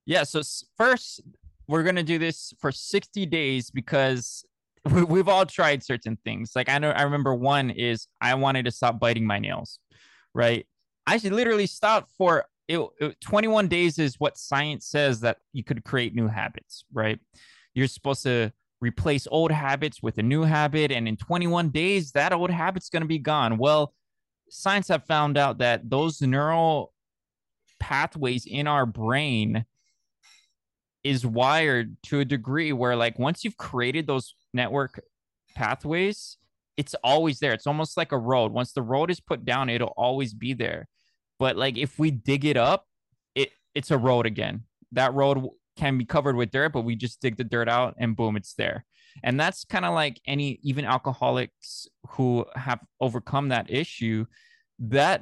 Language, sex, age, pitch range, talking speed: English, male, 20-39, 120-155 Hz, 170 wpm